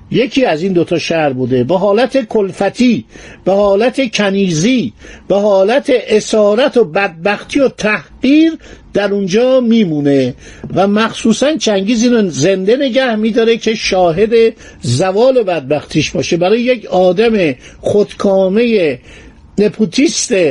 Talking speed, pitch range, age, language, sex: 115 wpm, 190-245 Hz, 50-69, Persian, male